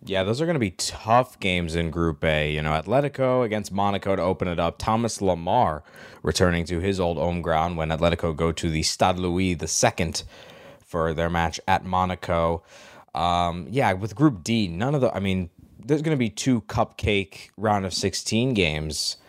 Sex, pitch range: male, 85-105 Hz